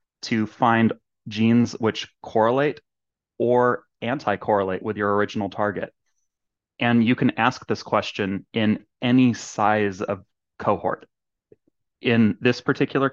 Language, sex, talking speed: English, male, 115 wpm